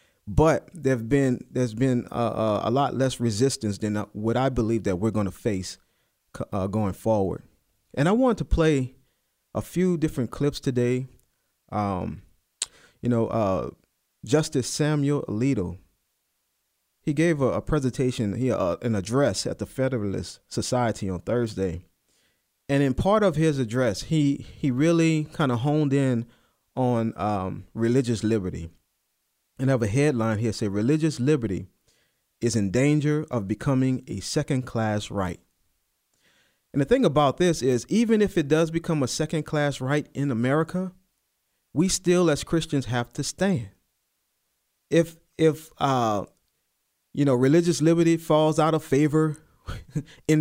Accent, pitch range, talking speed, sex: American, 115-155 Hz, 150 wpm, male